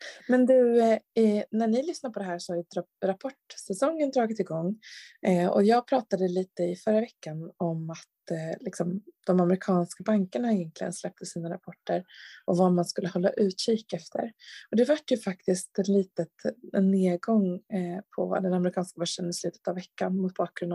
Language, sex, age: Swedish, female, 20-39